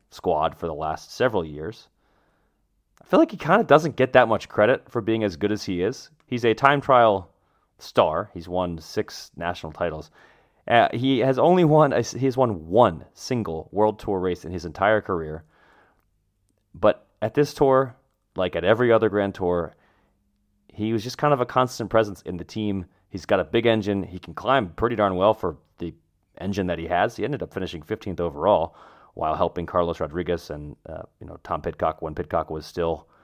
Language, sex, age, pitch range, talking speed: English, male, 30-49, 90-120 Hz, 195 wpm